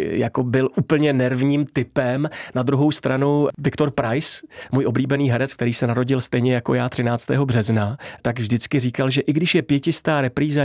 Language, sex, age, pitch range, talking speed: Czech, male, 30-49, 130-150 Hz, 170 wpm